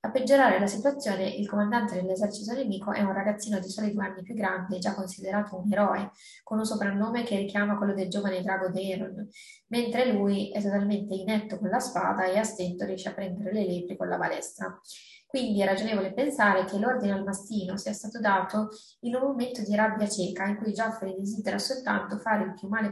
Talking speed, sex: 200 wpm, female